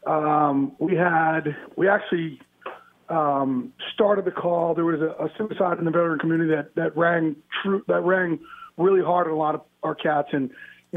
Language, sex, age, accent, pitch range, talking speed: English, male, 40-59, American, 155-195 Hz, 180 wpm